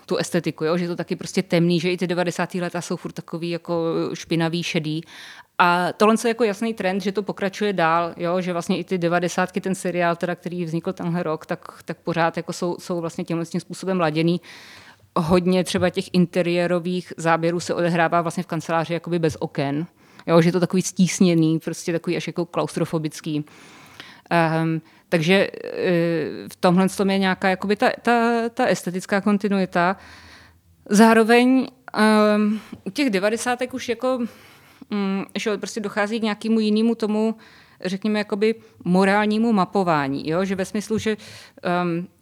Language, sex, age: Czech, female, 20-39